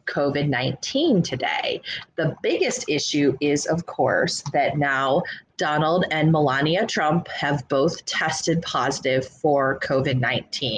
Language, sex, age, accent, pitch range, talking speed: English, female, 30-49, American, 145-175 Hz, 110 wpm